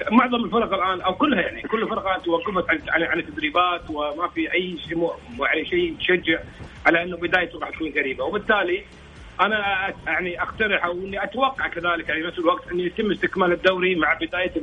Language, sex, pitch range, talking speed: Arabic, male, 170-220 Hz, 170 wpm